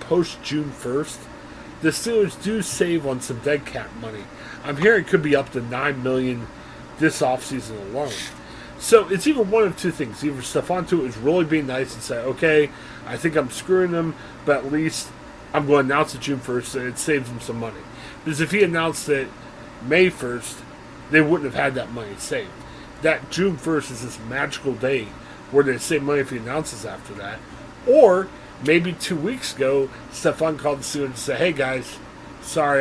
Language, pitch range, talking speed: English, 130-165 Hz, 190 wpm